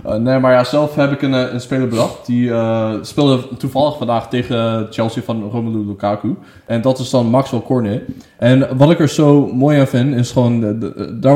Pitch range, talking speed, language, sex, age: 115-135 Hz, 205 wpm, Dutch, male, 20-39